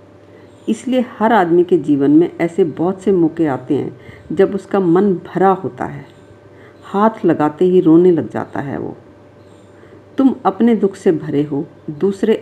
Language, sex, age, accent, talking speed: Hindi, female, 50-69, native, 160 wpm